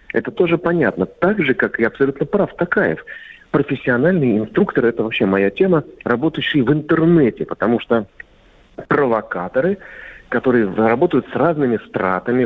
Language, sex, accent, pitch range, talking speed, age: Russian, male, native, 120-190 Hz, 130 wpm, 40-59